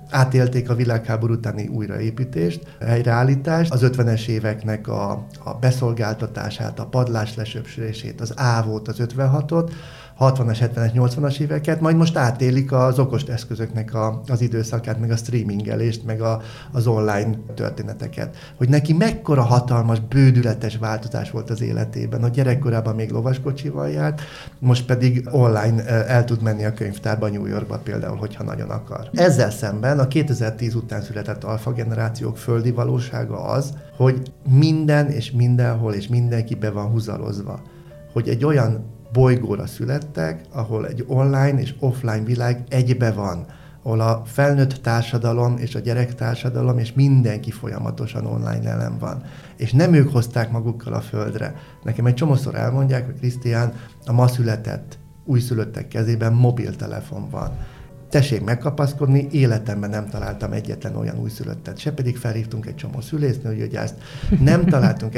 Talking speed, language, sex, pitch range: 140 wpm, Hungarian, male, 110-135 Hz